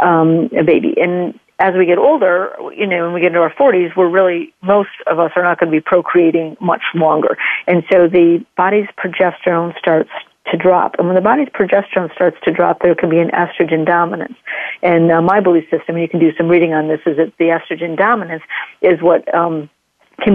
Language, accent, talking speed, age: English, American, 215 wpm, 50-69